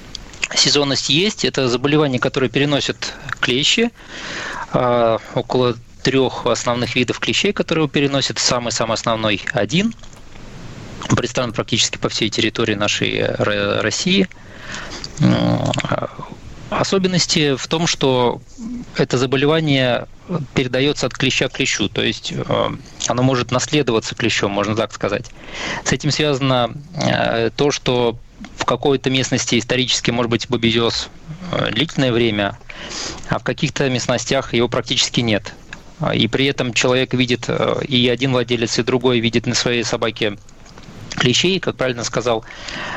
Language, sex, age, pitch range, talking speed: Russian, male, 20-39, 115-140 Hz, 120 wpm